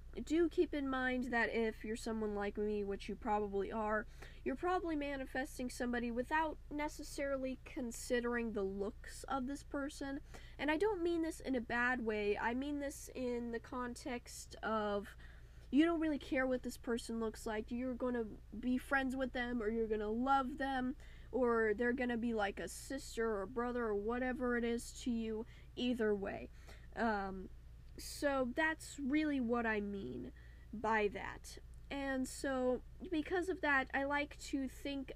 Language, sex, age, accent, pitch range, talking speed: English, female, 10-29, American, 220-270 Hz, 170 wpm